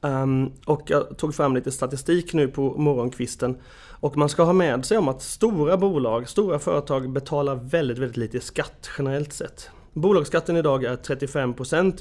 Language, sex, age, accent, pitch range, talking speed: Swedish, male, 30-49, native, 125-155 Hz, 165 wpm